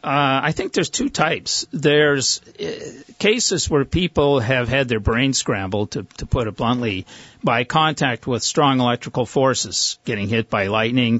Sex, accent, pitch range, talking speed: male, American, 105-140 Hz, 165 wpm